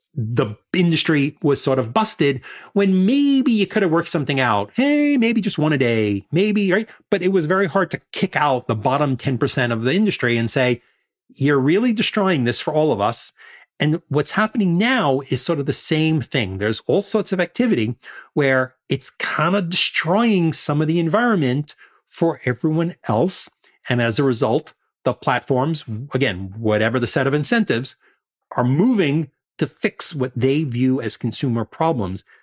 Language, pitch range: English, 130-200 Hz